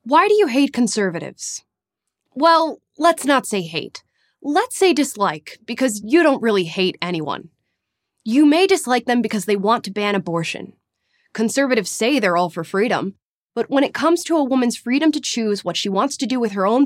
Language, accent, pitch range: English, American, 200-265 Hz